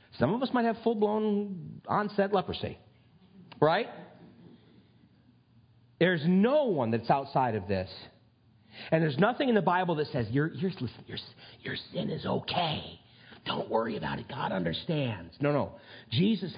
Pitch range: 120-195 Hz